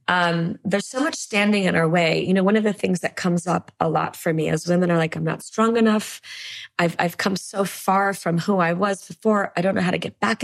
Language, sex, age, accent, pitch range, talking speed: English, female, 20-39, American, 170-215 Hz, 265 wpm